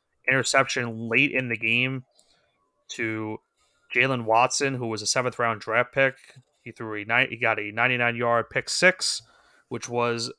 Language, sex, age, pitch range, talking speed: English, male, 30-49, 120-145 Hz, 170 wpm